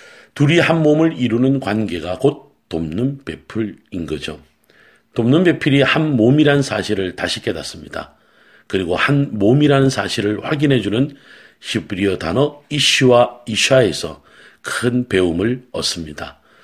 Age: 40-59